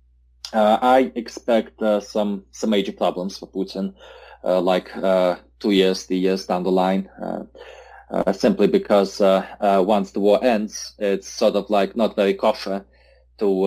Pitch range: 95-105 Hz